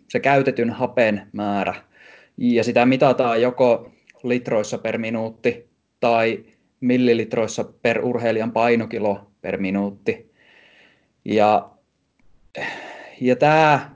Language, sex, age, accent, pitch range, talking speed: Finnish, male, 20-39, native, 110-130 Hz, 90 wpm